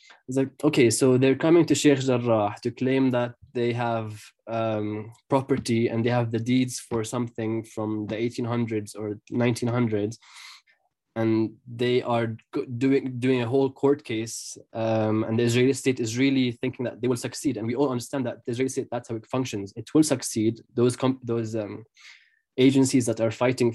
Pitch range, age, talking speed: 115-135 Hz, 20-39, 180 wpm